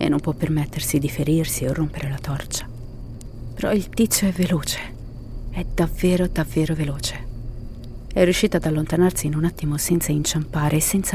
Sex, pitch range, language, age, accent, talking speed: female, 120-175 Hz, Italian, 40-59, native, 160 wpm